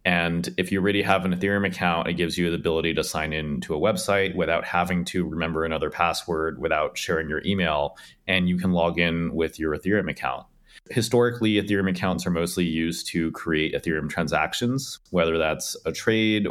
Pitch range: 85-100 Hz